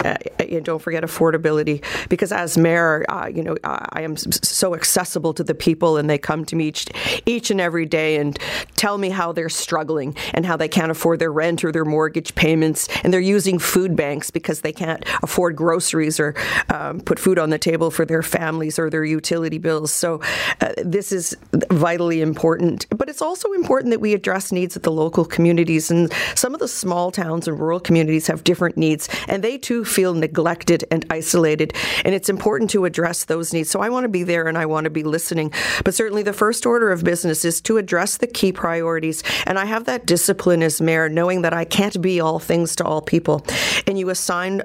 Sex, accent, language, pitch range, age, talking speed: female, American, English, 160-185 Hz, 40-59, 210 wpm